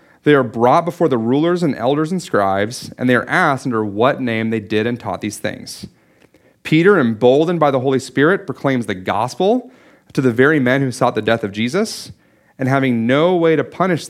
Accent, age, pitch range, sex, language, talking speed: American, 30-49, 110-155 Hz, male, English, 205 wpm